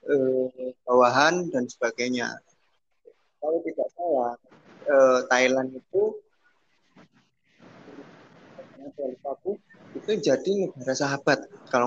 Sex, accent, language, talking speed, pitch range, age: male, native, Indonesian, 75 wpm, 130-175 Hz, 20-39